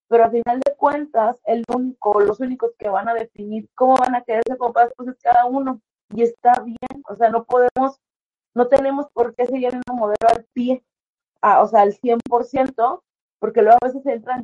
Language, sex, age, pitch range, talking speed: Spanish, female, 30-49, 220-255 Hz, 210 wpm